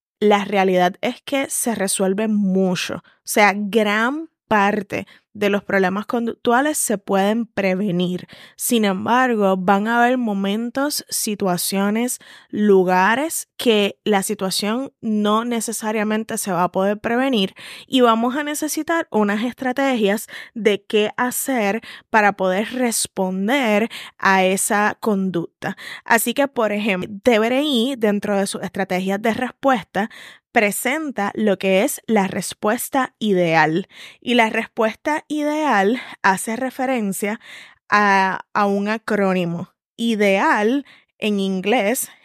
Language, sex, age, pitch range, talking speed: Spanish, female, 10-29, 195-240 Hz, 120 wpm